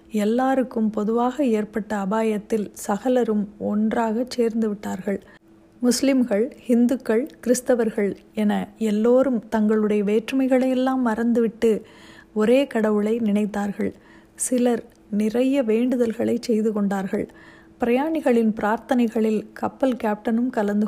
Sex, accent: female, native